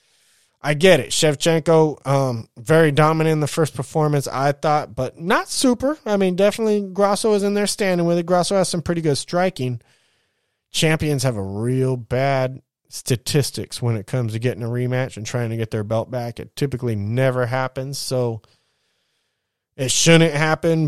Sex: male